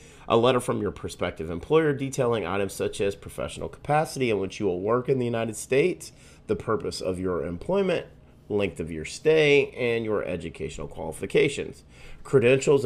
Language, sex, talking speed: English, male, 165 wpm